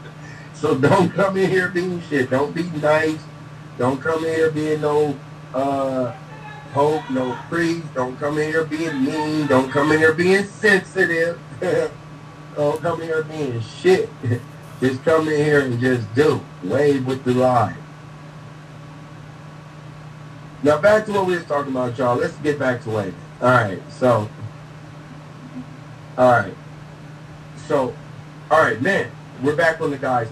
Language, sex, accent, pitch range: English, male, American, 130-150 Hz